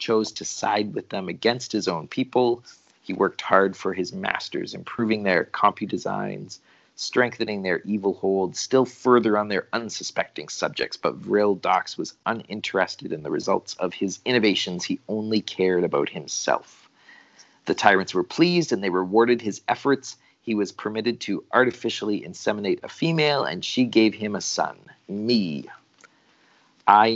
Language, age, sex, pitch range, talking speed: English, 30-49, male, 100-120 Hz, 150 wpm